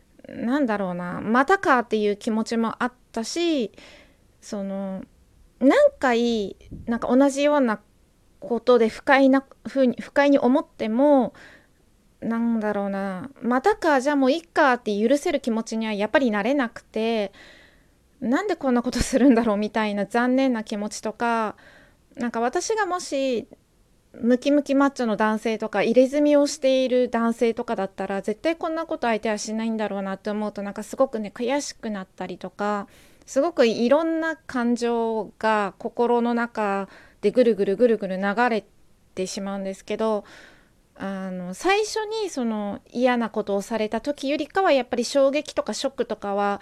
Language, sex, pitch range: Japanese, female, 210-270 Hz